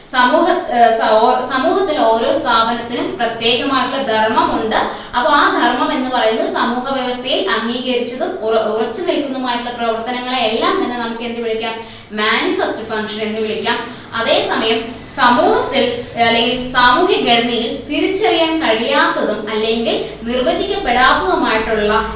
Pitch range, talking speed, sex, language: 230-275 Hz, 90 wpm, female, Malayalam